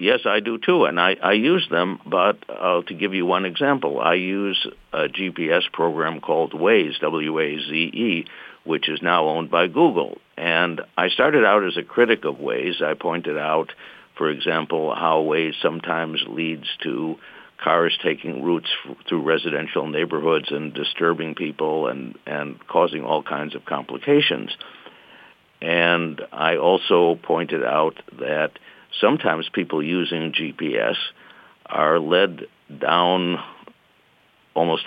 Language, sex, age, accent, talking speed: English, male, 60-79, American, 135 wpm